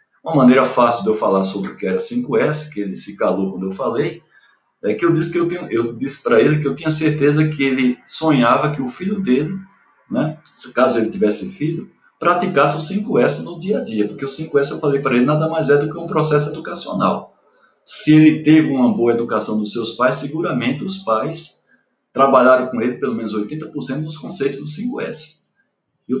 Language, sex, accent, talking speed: Portuguese, male, Brazilian, 200 wpm